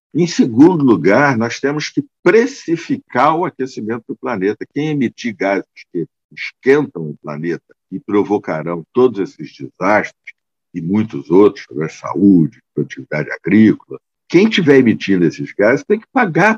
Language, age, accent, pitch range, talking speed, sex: Portuguese, 60-79, Brazilian, 85-135 Hz, 140 wpm, male